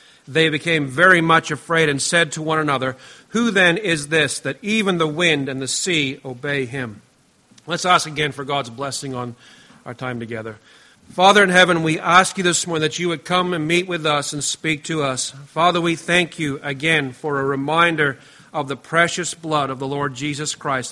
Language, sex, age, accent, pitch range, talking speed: English, male, 40-59, American, 140-170 Hz, 200 wpm